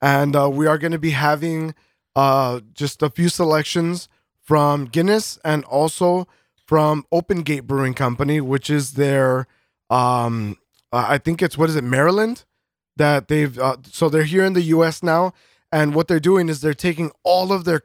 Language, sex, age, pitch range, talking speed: English, male, 20-39, 130-165 Hz, 180 wpm